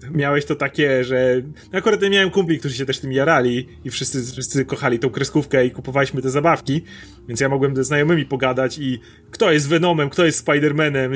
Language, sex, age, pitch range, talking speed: Polish, male, 30-49, 125-170 Hz, 200 wpm